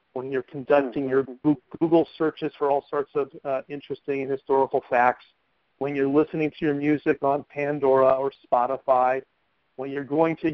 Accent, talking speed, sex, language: American, 165 wpm, male, English